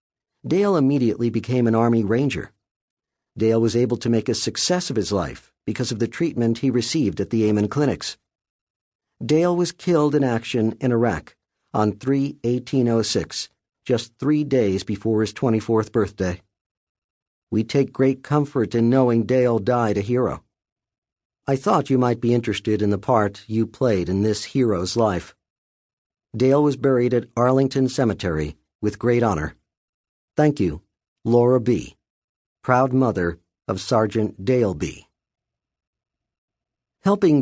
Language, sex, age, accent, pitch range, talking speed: English, male, 50-69, American, 105-130 Hz, 140 wpm